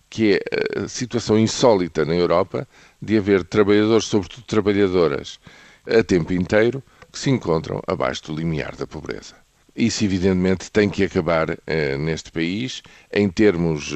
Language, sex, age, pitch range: Portuguese, male, 50-69, 85-105 Hz